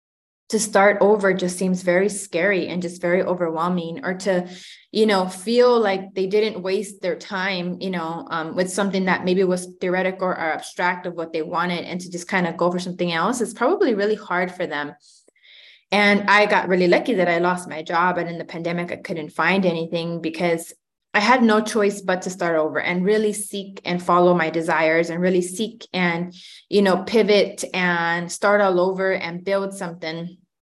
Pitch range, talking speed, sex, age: 175-200 Hz, 195 wpm, female, 20-39